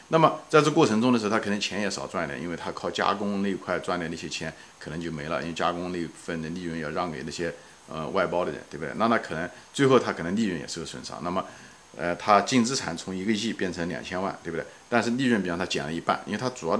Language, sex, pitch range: Chinese, male, 90-130 Hz